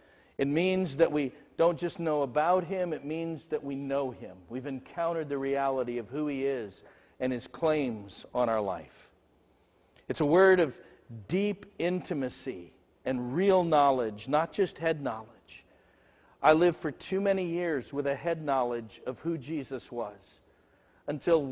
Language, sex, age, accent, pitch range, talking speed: English, male, 50-69, American, 130-175 Hz, 160 wpm